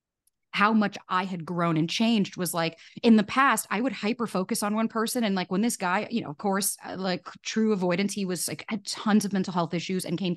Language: English